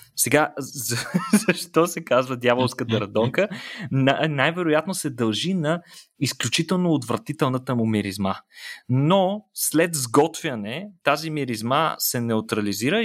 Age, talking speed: 20-39, 100 wpm